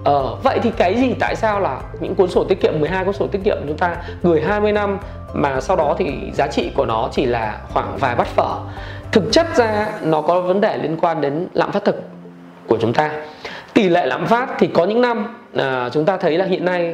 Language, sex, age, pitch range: Vietnamese, male, 20-39, 150-210 Hz